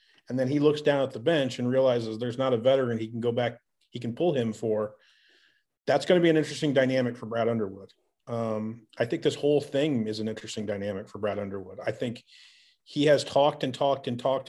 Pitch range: 115-135 Hz